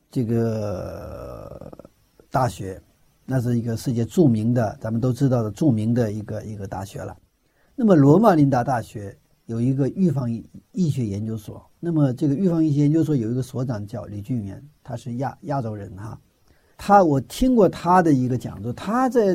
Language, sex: Chinese, male